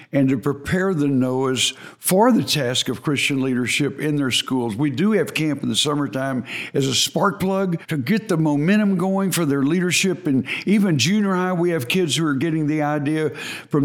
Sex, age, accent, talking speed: male, 60-79, American, 200 wpm